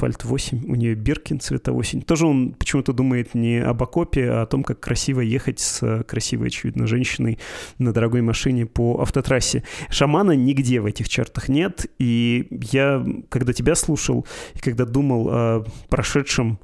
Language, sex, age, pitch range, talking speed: Russian, male, 30-49, 115-135 Hz, 160 wpm